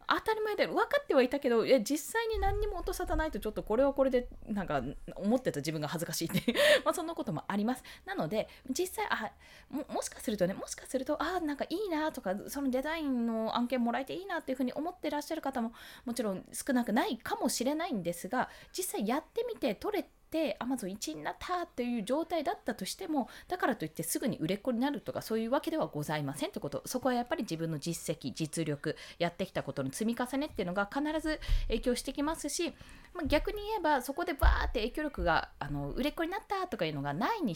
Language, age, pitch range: Japanese, 20-39, 195-310 Hz